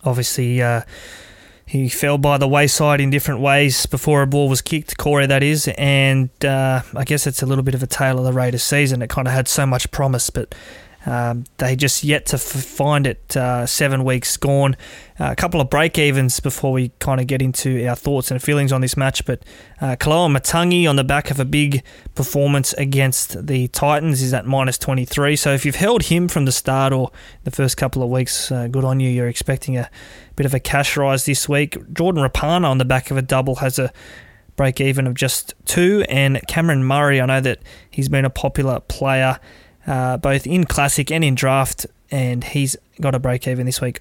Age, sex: 20-39, male